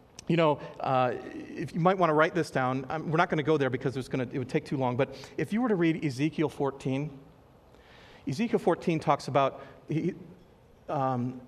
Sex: male